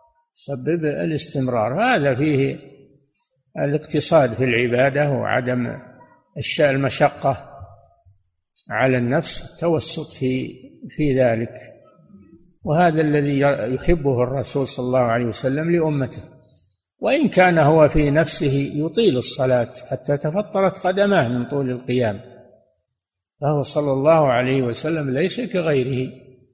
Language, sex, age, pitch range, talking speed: Arabic, male, 60-79, 125-160 Hz, 100 wpm